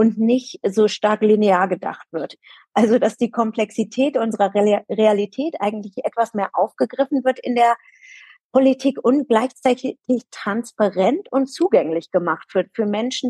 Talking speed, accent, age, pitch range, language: 140 wpm, German, 40-59, 205-255 Hz, German